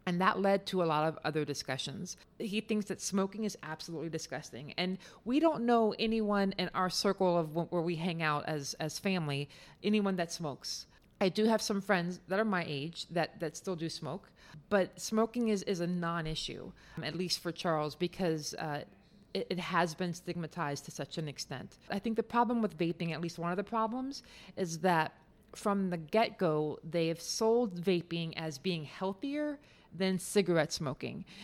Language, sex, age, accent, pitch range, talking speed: English, female, 30-49, American, 165-205 Hz, 185 wpm